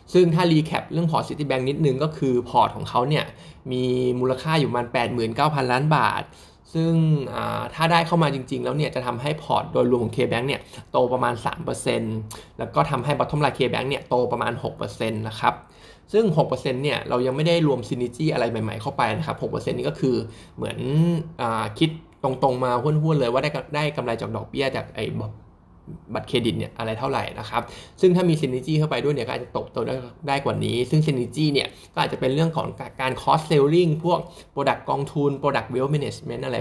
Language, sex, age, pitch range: Thai, male, 20-39, 120-150 Hz